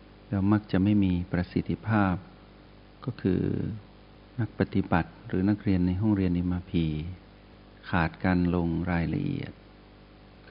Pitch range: 95-105 Hz